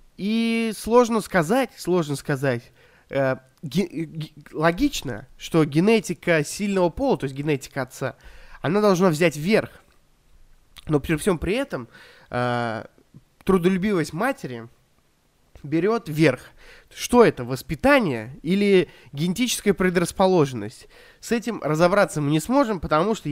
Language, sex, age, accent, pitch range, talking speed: Russian, male, 20-39, native, 135-195 Hz, 115 wpm